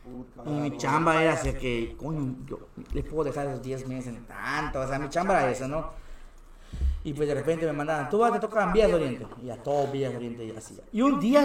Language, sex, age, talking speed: Spanish, male, 30-49, 240 wpm